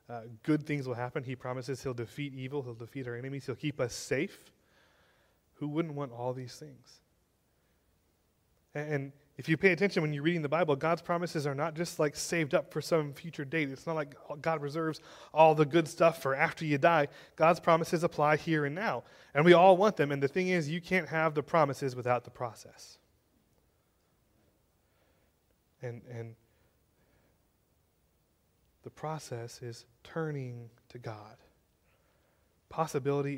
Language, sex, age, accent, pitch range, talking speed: English, male, 20-39, American, 120-155 Hz, 165 wpm